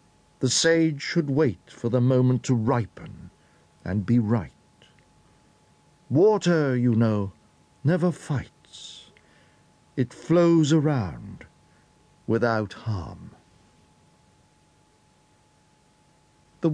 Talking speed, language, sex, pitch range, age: 80 wpm, English, male, 95-135 Hz, 60-79